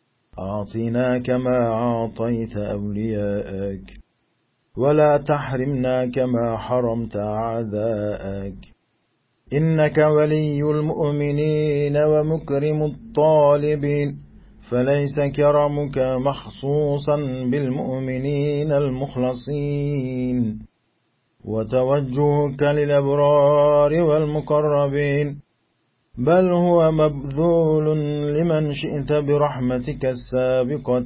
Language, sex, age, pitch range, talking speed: Turkish, male, 40-59, 115-145 Hz, 55 wpm